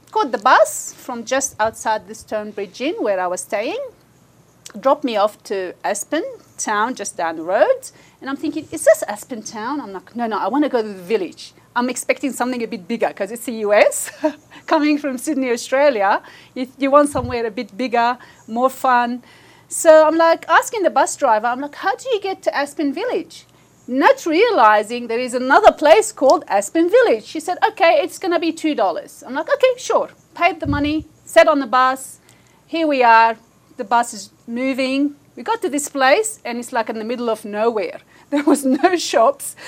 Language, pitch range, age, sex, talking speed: English, 240-325 Hz, 40-59, female, 195 wpm